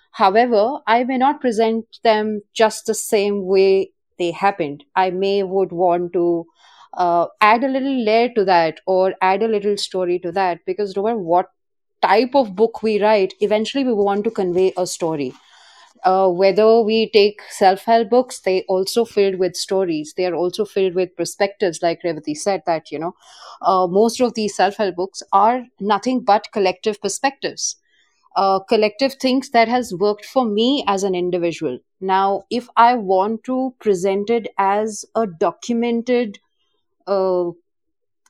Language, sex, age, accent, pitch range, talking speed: Hindi, female, 30-49, native, 190-235 Hz, 160 wpm